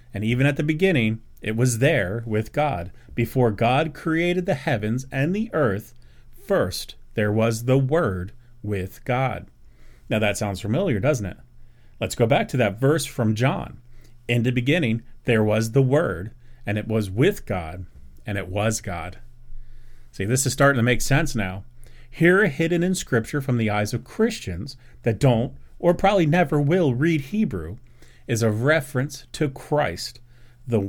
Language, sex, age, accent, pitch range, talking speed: English, male, 30-49, American, 105-135 Hz, 170 wpm